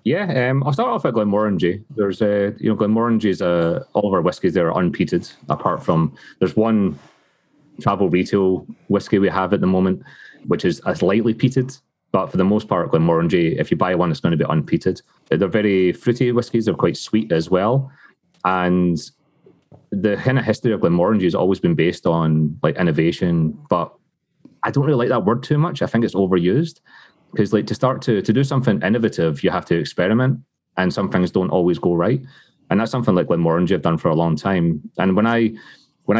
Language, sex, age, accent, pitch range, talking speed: English, male, 30-49, British, 90-125 Hz, 205 wpm